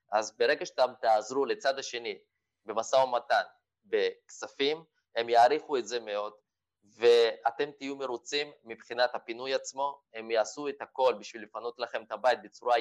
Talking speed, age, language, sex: 140 wpm, 20-39, Hebrew, male